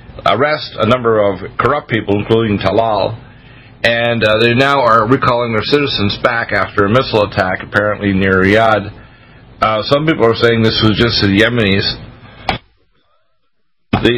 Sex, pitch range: male, 100-125 Hz